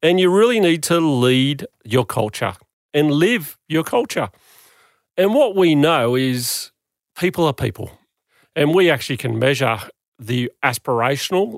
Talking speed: 140 wpm